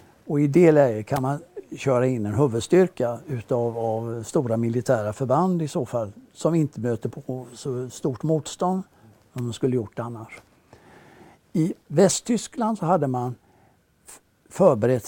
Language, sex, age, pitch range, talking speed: Swedish, male, 60-79, 120-170 Hz, 130 wpm